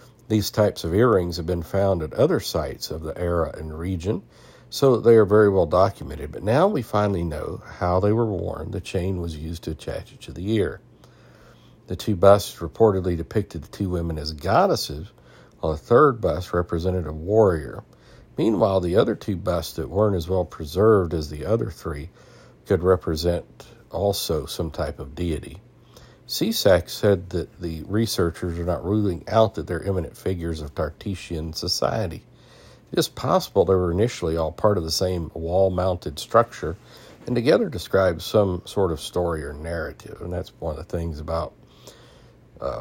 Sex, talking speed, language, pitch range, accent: male, 175 wpm, English, 80-100 Hz, American